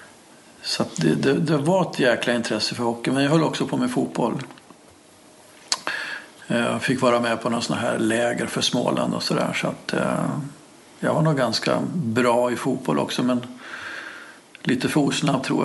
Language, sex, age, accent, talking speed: English, male, 50-69, Swedish, 175 wpm